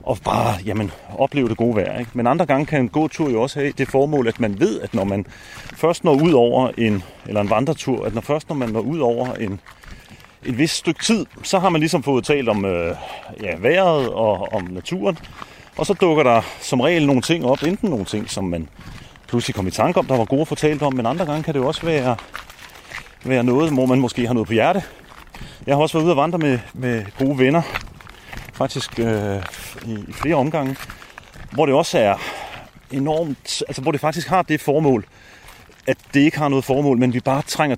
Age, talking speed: 30-49, 225 wpm